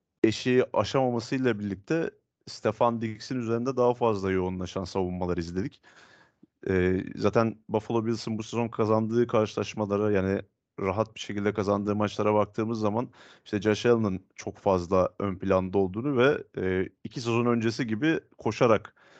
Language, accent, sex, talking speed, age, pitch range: Turkish, native, male, 135 wpm, 30-49, 100-120 Hz